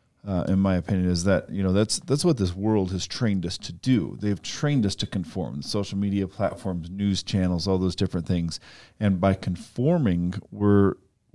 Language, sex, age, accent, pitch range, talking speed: English, male, 40-59, American, 90-105 Hz, 190 wpm